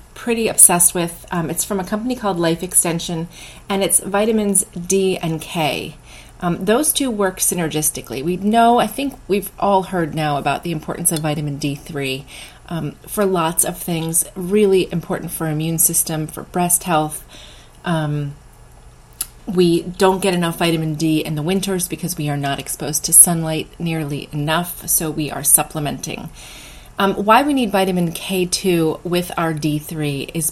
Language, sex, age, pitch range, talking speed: English, female, 30-49, 155-190 Hz, 160 wpm